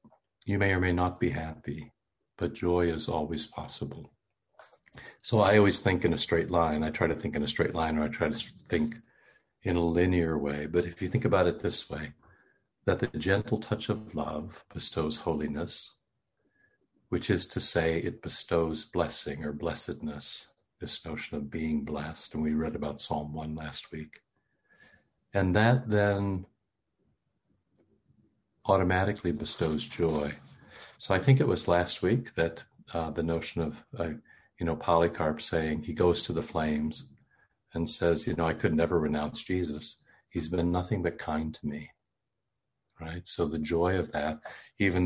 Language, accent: English, American